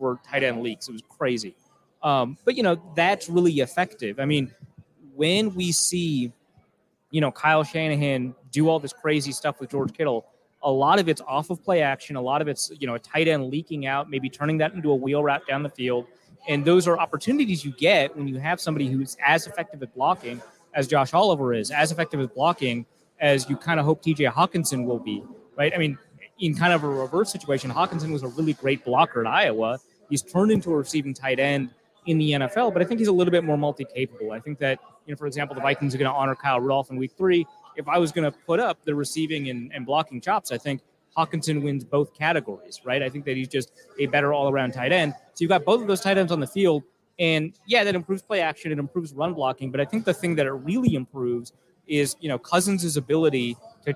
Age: 30-49